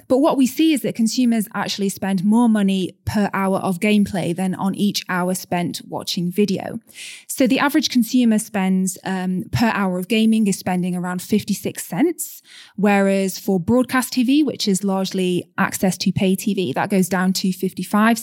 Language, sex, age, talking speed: English, female, 20-39, 175 wpm